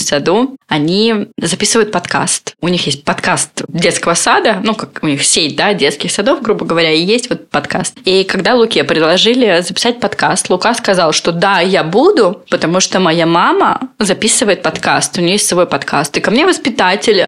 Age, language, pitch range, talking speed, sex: 20-39, Russian, 185-245 Hz, 175 wpm, female